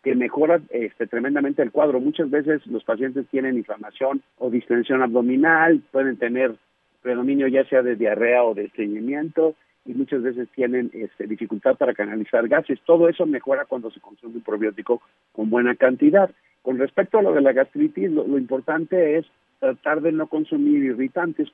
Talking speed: 165 wpm